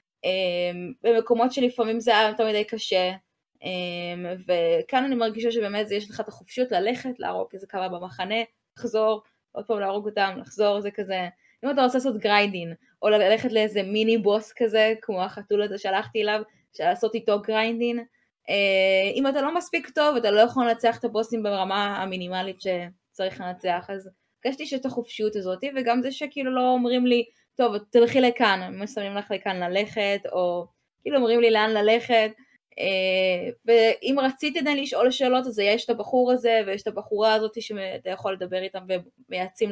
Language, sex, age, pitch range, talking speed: Hebrew, female, 20-39, 195-240 Hz, 170 wpm